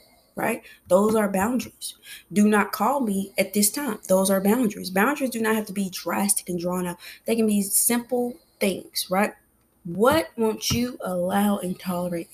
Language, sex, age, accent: English, female, 20-39, American